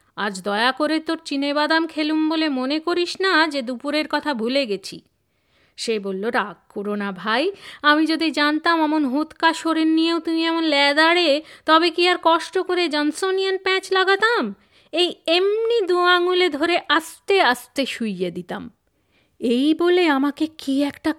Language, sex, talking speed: Bengali, female, 145 wpm